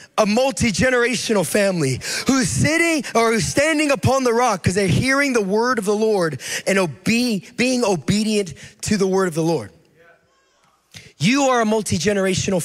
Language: English